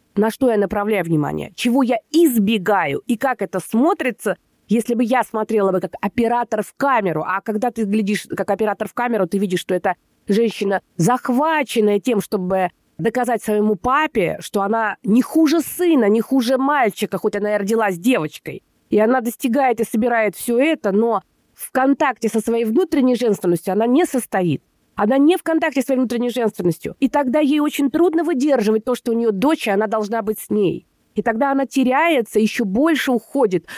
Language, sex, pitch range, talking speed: Russian, female, 210-270 Hz, 180 wpm